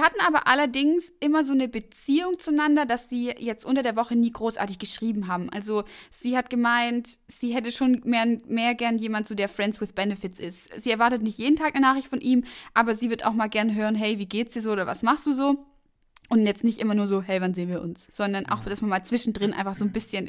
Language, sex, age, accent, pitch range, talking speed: German, female, 20-39, German, 200-255 Hz, 240 wpm